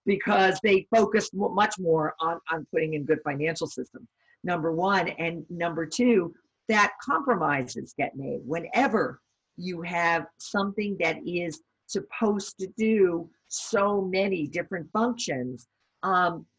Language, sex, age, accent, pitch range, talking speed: English, female, 50-69, American, 160-215 Hz, 125 wpm